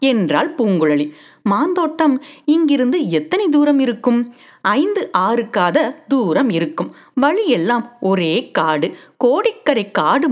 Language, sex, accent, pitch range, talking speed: Tamil, female, native, 190-295 Hz, 100 wpm